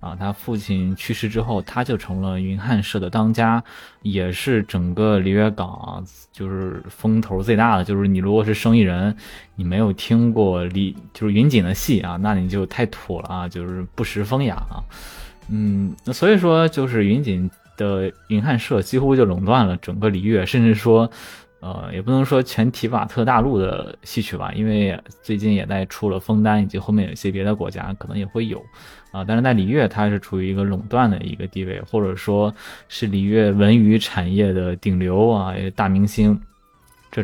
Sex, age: male, 20-39